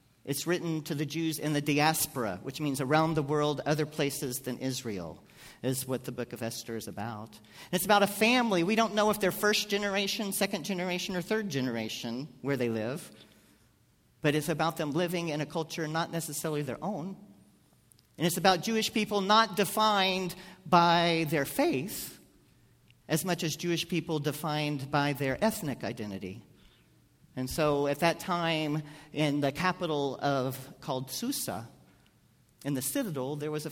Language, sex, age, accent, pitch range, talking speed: English, male, 50-69, American, 135-200 Hz, 165 wpm